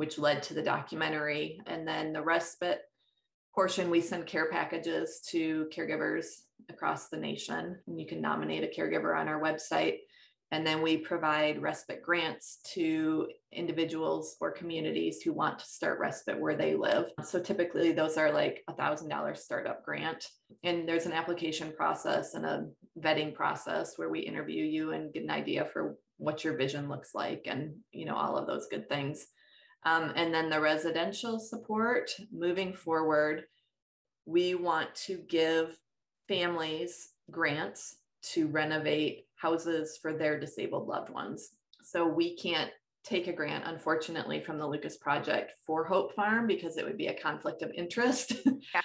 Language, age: English, 20-39